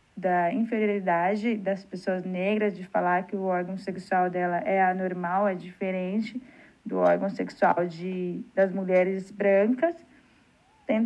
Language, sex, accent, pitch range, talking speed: Portuguese, female, Brazilian, 195-240 Hz, 130 wpm